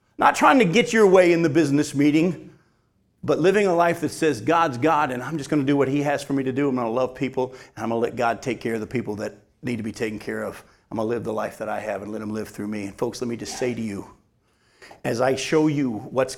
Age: 50-69